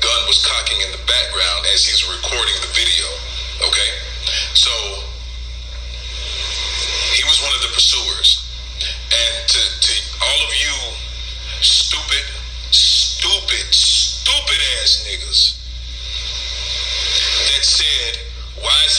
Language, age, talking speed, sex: English, 40-59, 105 wpm, male